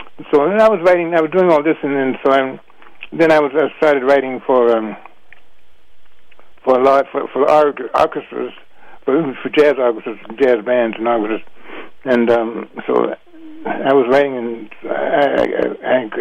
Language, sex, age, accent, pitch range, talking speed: English, male, 60-79, American, 120-145 Hz, 170 wpm